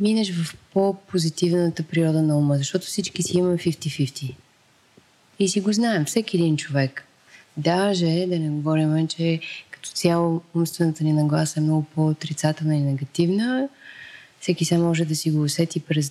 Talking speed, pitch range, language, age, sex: 155 wpm, 155-190 Hz, Bulgarian, 20-39, female